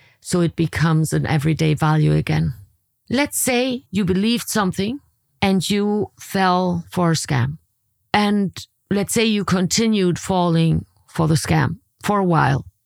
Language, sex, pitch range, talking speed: English, female, 145-180 Hz, 140 wpm